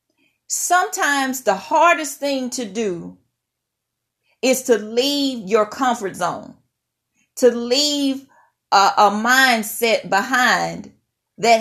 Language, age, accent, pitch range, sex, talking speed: English, 40-59, American, 210-280 Hz, female, 100 wpm